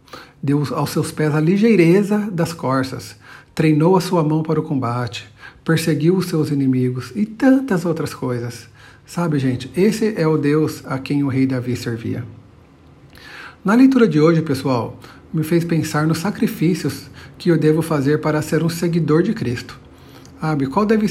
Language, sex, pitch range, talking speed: Portuguese, male, 125-165 Hz, 165 wpm